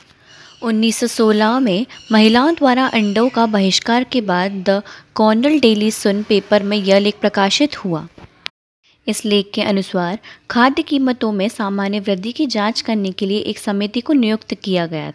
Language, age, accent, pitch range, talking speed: Hindi, 20-39, native, 195-230 Hz, 155 wpm